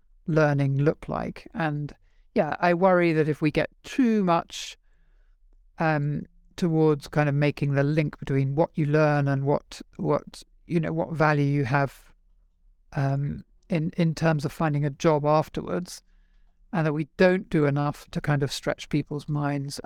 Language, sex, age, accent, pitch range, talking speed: English, male, 50-69, British, 140-160 Hz, 165 wpm